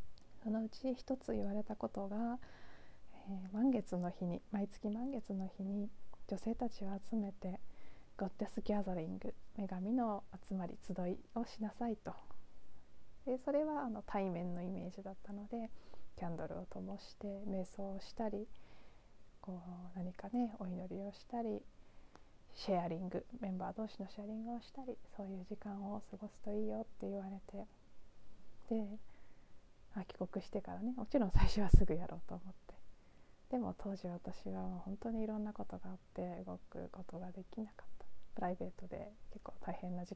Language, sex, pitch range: Japanese, female, 185-225 Hz